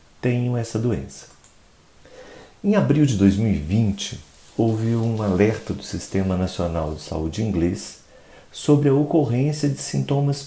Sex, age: male, 50-69